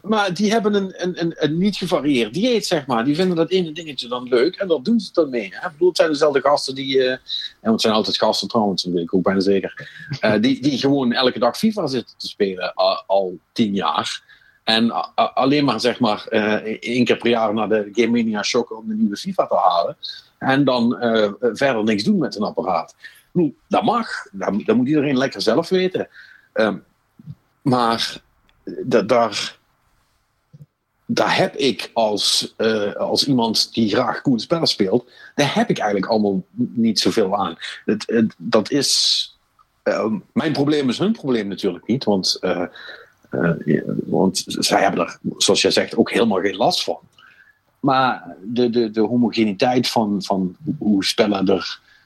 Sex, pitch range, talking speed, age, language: male, 110-175 Hz, 180 wpm, 50-69, Dutch